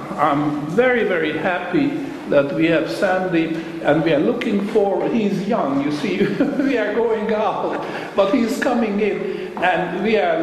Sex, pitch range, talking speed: male, 155-220 Hz, 160 wpm